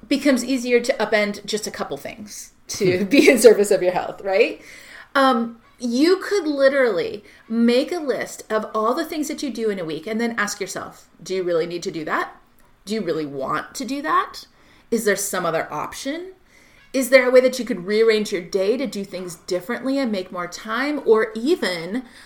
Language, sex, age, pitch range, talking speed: English, female, 30-49, 205-270 Hz, 205 wpm